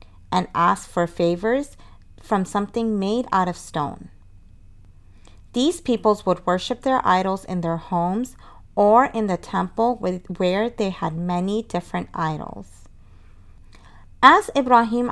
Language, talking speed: English, 125 wpm